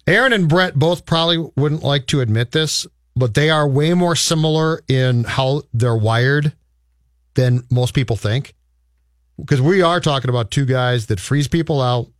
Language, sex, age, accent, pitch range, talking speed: English, male, 40-59, American, 125-170 Hz, 170 wpm